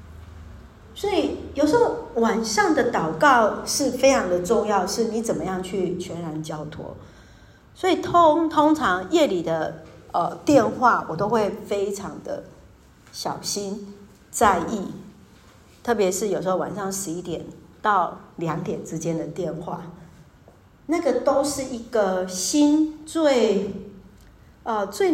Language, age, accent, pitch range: Chinese, 50-69, American, 160-220 Hz